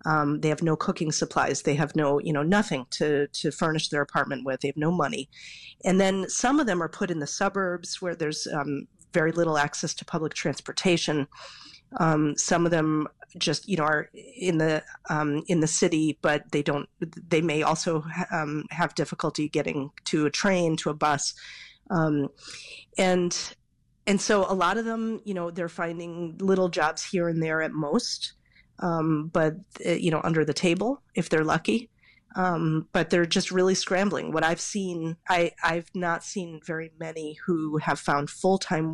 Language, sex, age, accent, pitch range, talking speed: English, female, 40-59, American, 150-180 Hz, 185 wpm